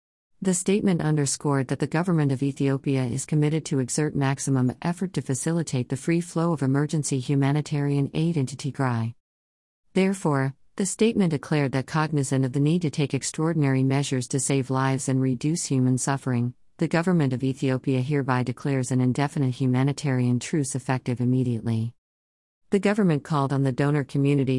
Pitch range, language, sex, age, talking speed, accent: 130-150 Hz, English, female, 50-69, 155 wpm, American